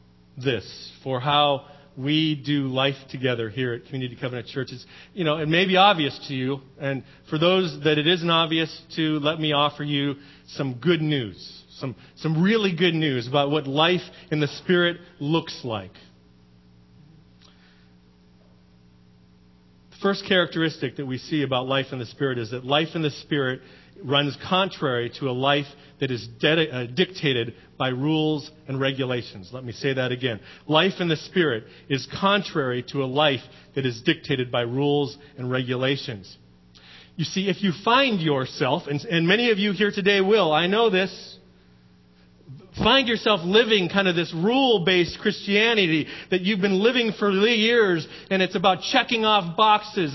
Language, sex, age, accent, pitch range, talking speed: English, male, 40-59, American, 130-200 Hz, 165 wpm